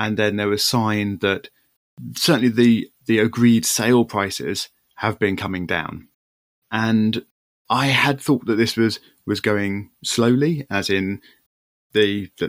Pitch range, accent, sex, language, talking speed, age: 100-130 Hz, British, male, English, 150 wpm, 20-39